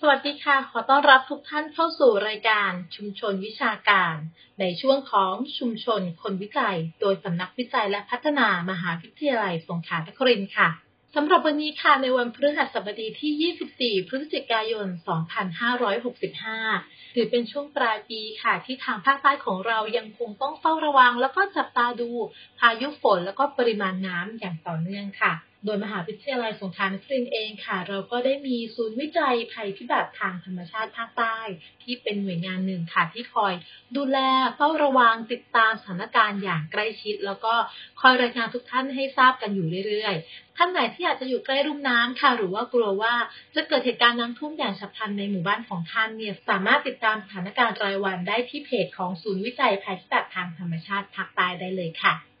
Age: 30-49